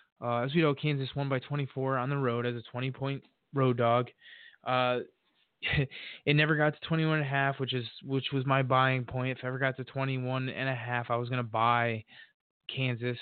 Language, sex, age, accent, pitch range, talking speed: English, male, 20-39, American, 120-135 Hz, 215 wpm